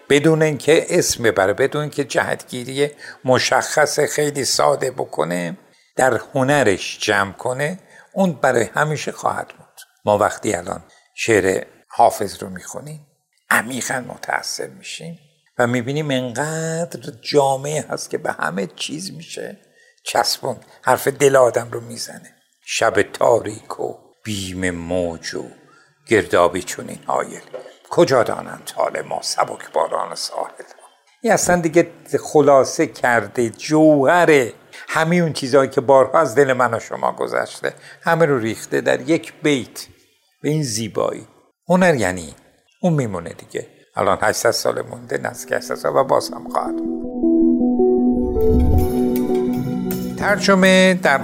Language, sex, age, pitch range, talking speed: Persian, male, 60-79, 110-155 Hz, 125 wpm